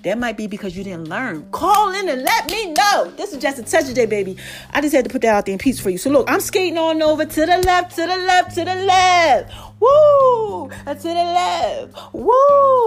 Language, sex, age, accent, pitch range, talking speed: English, female, 30-49, American, 200-315 Hz, 245 wpm